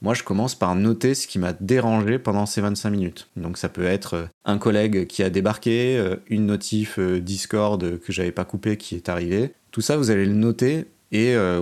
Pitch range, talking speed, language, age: 95-115 Hz, 205 wpm, French, 30-49